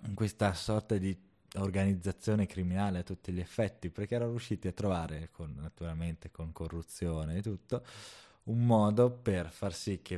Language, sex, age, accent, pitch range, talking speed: Italian, male, 20-39, native, 85-100 Hz, 155 wpm